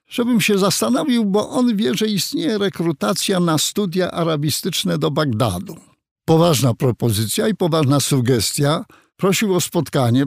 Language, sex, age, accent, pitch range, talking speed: Polish, male, 50-69, native, 140-195 Hz, 130 wpm